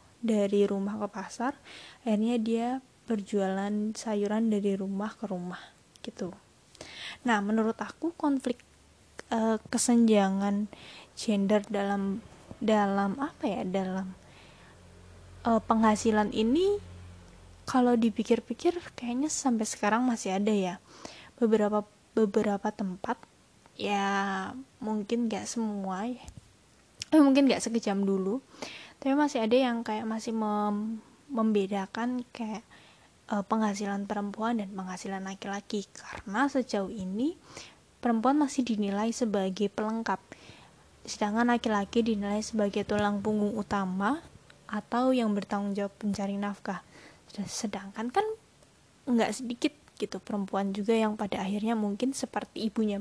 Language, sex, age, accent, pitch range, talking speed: Indonesian, female, 10-29, native, 200-235 Hz, 110 wpm